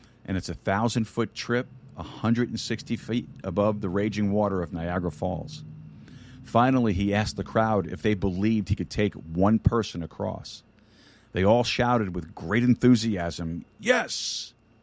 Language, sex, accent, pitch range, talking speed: English, male, American, 100-115 Hz, 140 wpm